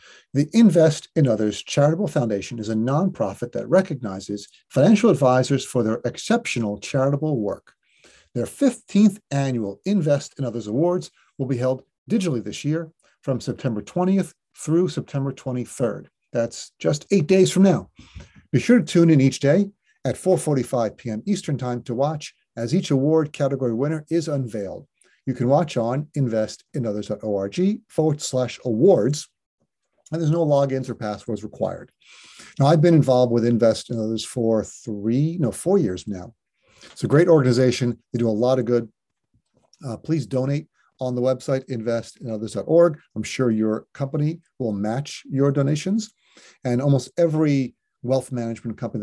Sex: male